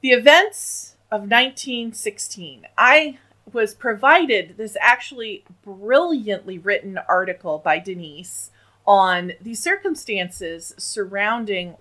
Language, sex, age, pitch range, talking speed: English, female, 40-59, 180-260 Hz, 90 wpm